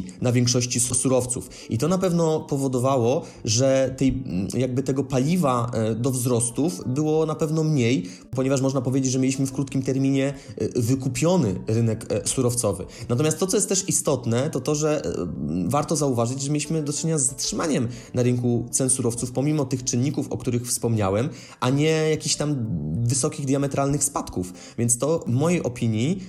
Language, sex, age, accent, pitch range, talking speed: Polish, male, 20-39, native, 120-140 Hz, 155 wpm